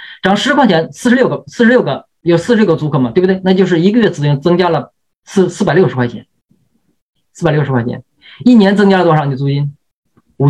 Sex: male